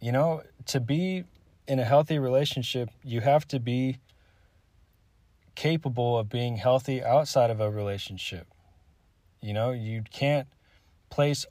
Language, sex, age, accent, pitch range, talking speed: English, male, 20-39, American, 100-125 Hz, 130 wpm